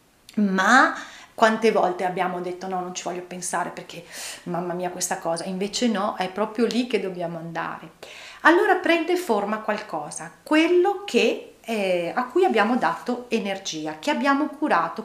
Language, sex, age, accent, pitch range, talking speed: Italian, female, 30-49, native, 180-235 Hz, 150 wpm